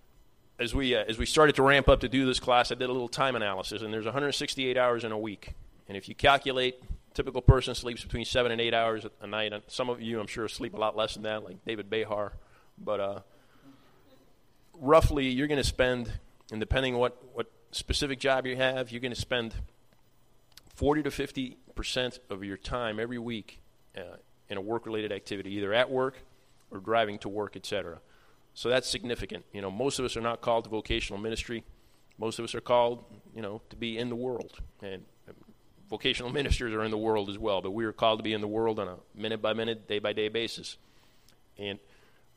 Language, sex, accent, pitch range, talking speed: English, male, American, 105-125 Hz, 210 wpm